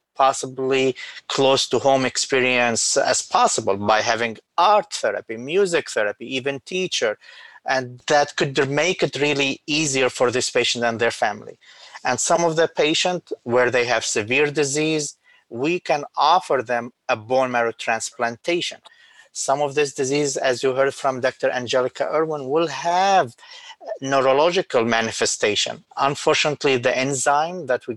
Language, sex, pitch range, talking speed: English, male, 120-155 Hz, 135 wpm